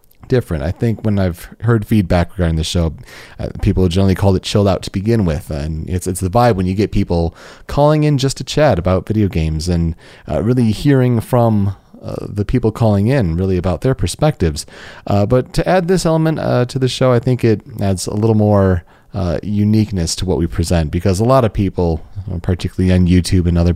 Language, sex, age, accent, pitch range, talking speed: English, male, 30-49, American, 85-115 Hz, 210 wpm